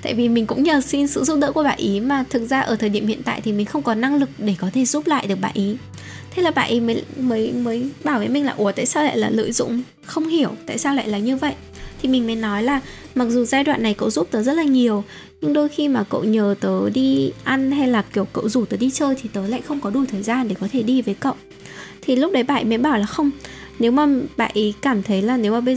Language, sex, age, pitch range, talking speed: Vietnamese, female, 10-29, 210-270 Hz, 295 wpm